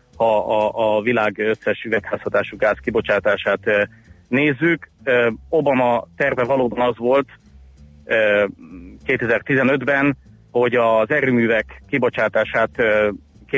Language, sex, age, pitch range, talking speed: Hungarian, male, 30-49, 105-135 Hz, 85 wpm